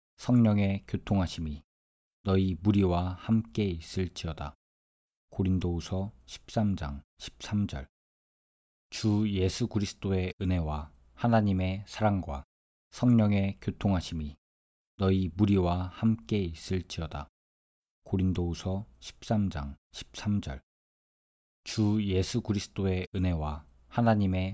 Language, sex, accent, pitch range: Korean, male, native, 75-100 Hz